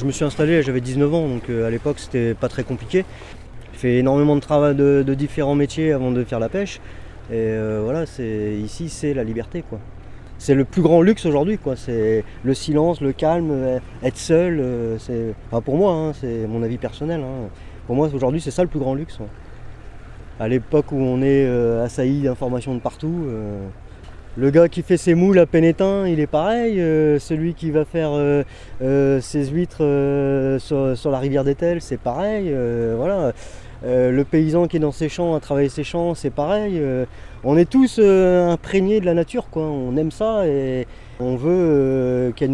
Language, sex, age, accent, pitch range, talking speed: French, male, 30-49, French, 125-160 Hz, 205 wpm